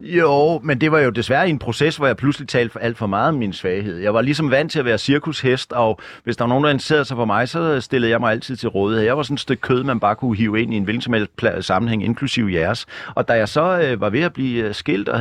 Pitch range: 115-150 Hz